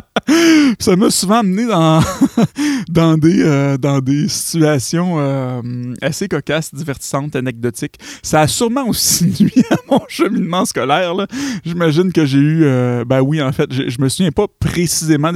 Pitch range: 125-165 Hz